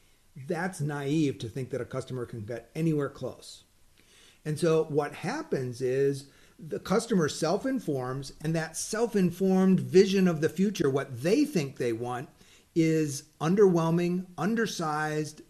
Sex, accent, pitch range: male, American, 145-185 Hz